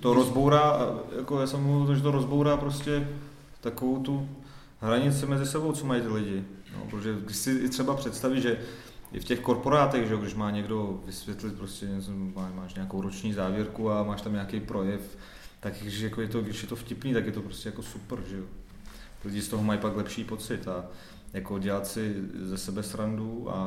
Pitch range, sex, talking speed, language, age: 100-115 Hz, male, 200 wpm, Czech, 30-49